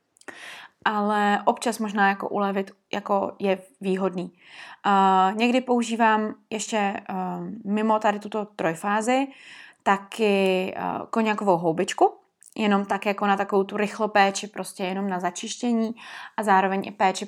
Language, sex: Czech, female